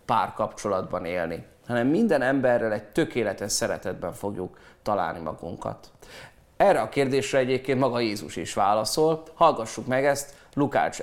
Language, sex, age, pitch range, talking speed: Hungarian, male, 30-49, 115-155 Hz, 125 wpm